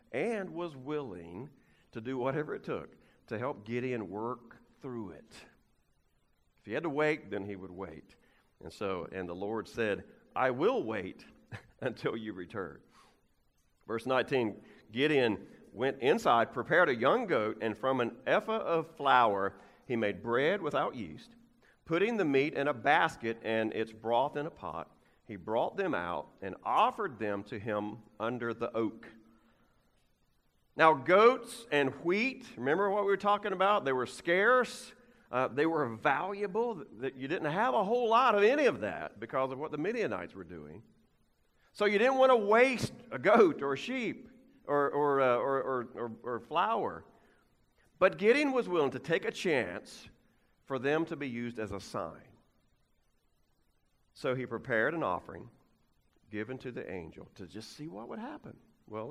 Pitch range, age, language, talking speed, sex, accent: 110-185 Hz, 50-69, English, 165 wpm, male, American